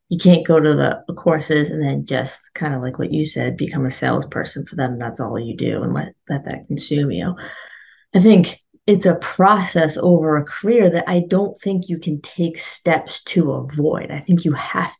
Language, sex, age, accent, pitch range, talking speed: English, female, 30-49, American, 150-185 Hz, 210 wpm